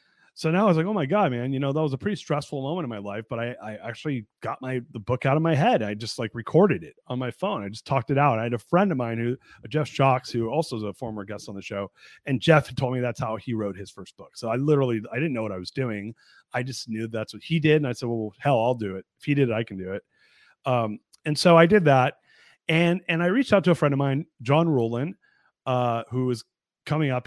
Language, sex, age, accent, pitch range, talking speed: English, male, 30-49, American, 110-145 Hz, 285 wpm